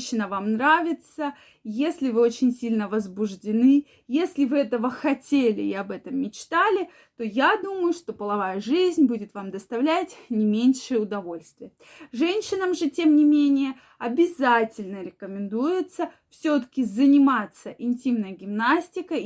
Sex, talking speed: female, 120 wpm